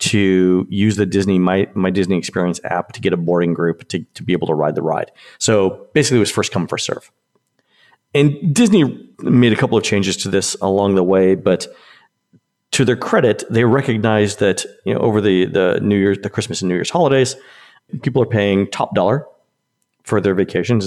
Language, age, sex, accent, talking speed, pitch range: English, 40-59, male, American, 200 wpm, 95-115 Hz